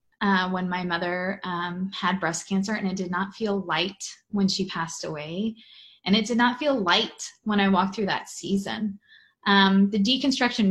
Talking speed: 185 wpm